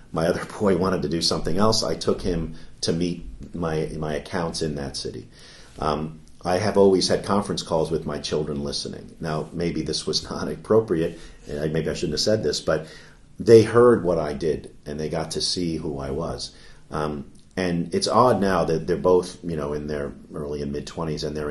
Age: 50-69